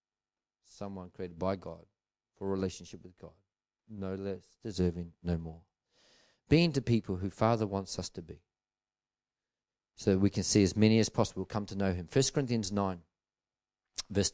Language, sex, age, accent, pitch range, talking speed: English, male, 40-59, Australian, 95-135 Hz, 165 wpm